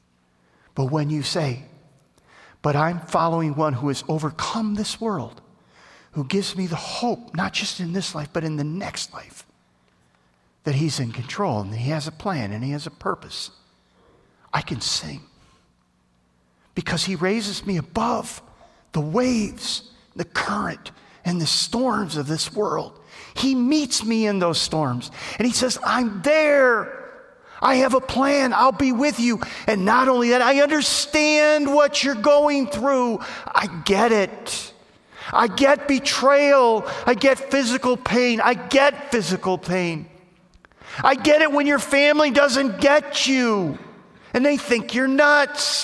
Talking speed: 155 wpm